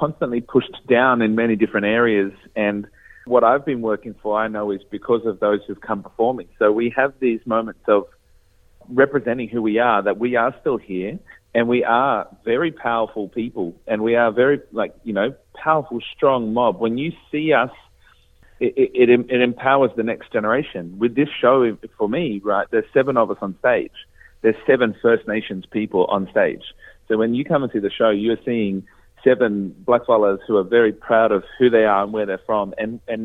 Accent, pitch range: Australian, 105-120 Hz